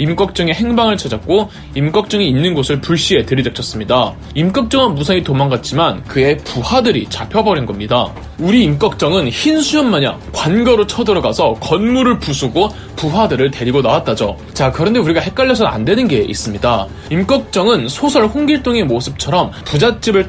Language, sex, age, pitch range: Korean, male, 20-39, 135-220 Hz